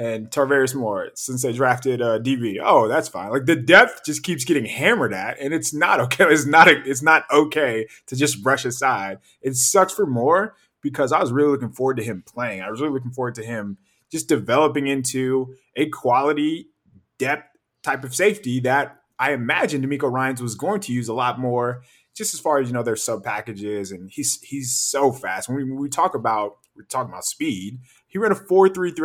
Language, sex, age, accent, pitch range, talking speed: English, male, 20-39, American, 110-145 Hz, 215 wpm